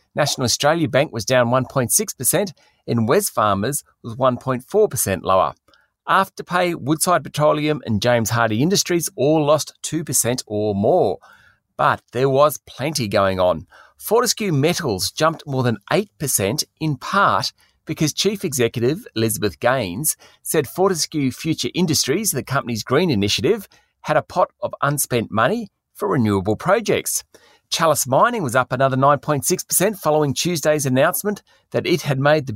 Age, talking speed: 40-59, 135 wpm